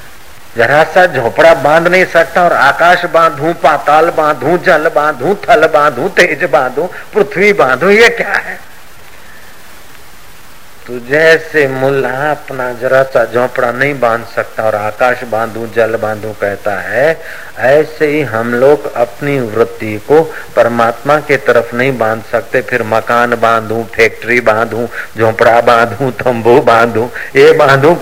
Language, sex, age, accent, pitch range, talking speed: Hindi, male, 50-69, native, 110-140 Hz, 130 wpm